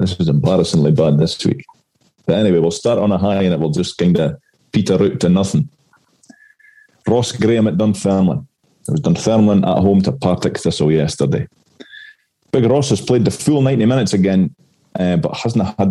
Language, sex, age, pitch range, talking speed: English, male, 30-49, 95-130 Hz, 185 wpm